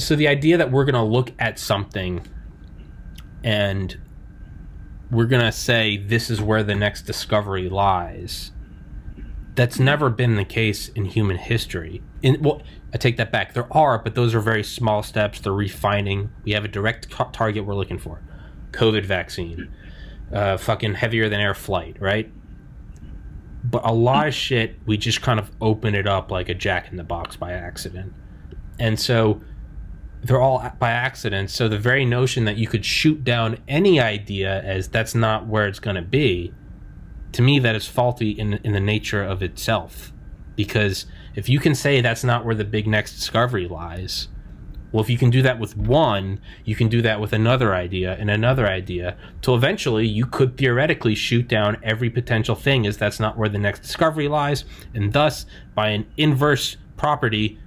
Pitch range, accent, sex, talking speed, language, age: 95-120 Hz, American, male, 180 wpm, English, 20-39